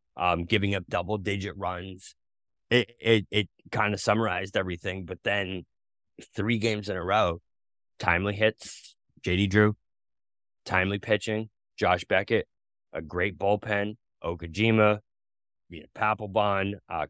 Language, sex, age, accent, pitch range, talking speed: English, male, 20-39, American, 90-105 Hz, 125 wpm